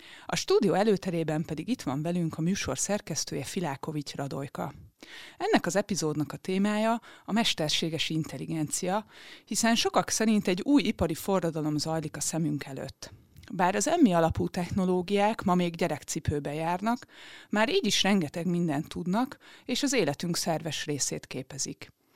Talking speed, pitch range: 140 wpm, 155-200 Hz